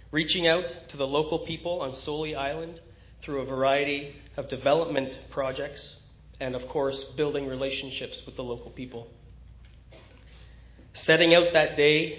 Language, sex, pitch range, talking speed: English, male, 115-160 Hz, 140 wpm